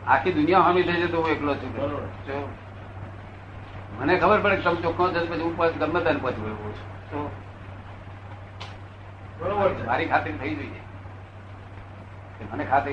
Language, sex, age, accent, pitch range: Gujarati, male, 60-79, native, 95-130 Hz